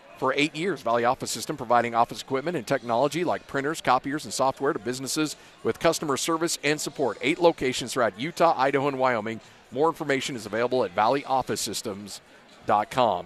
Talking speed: 165 wpm